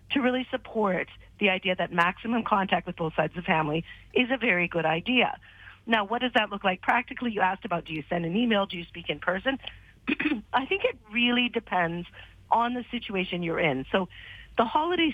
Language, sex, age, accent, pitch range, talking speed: English, female, 40-59, American, 175-245 Hz, 205 wpm